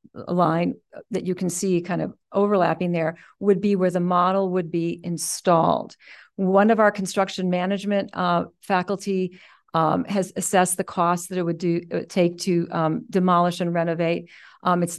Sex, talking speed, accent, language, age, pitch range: female, 165 wpm, American, English, 50-69, 180-220 Hz